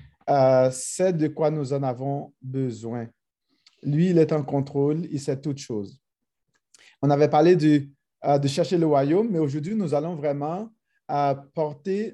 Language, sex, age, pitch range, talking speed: French, male, 50-69, 140-185 Hz, 165 wpm